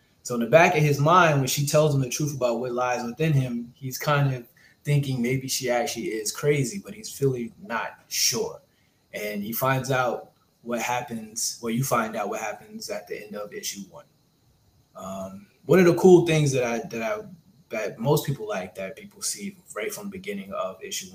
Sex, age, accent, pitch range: male, 20-39, American, 115-180 Hz